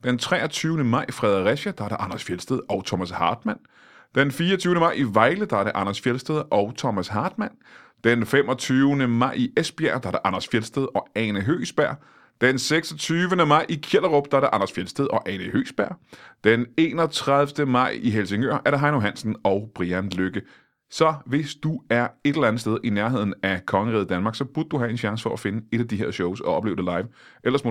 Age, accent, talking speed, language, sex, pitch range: 30-49, native, 210 wpm, Danish, male, 100-140 Hz